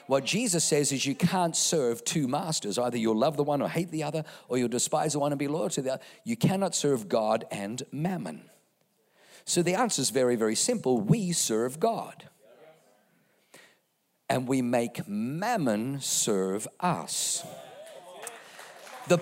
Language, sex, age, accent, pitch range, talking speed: English, male, 50-69, British, 130-185 Hz, 160 wpm